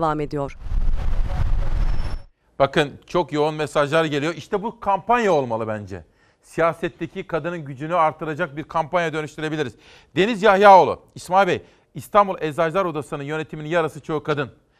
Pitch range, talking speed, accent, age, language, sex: 140-180 Hz, 115 wpm, native, 40-59, Turkish, male